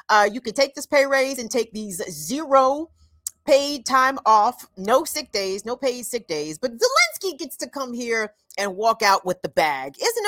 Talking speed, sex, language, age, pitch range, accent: 200 wpm, female, English, 40-59, 195-290 Hz, American